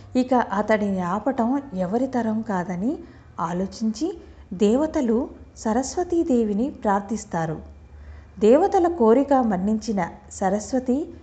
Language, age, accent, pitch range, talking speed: Telugu, 50-69, native, 190-270 Hz, 75 wpm